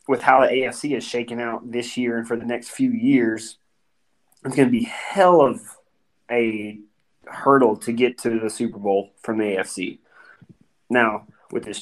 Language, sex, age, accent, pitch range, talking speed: English, male, 20-39, American, 110-130 Hz, 175 wpm